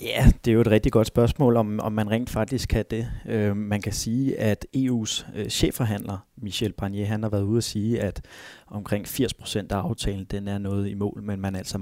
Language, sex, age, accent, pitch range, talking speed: Danish, male, 30-49, native, 100-115 Hz, 225 wpm